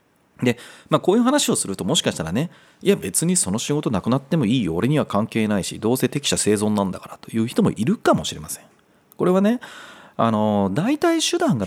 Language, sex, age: Japanese, male, 40-59